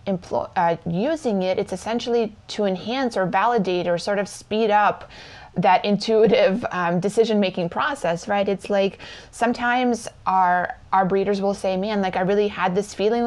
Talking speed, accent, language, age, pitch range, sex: 165 wpm, American, English, 20-39, 180-215 Hz, female